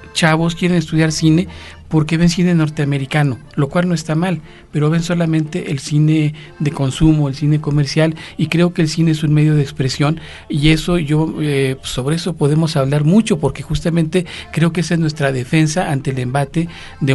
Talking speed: 190 wpm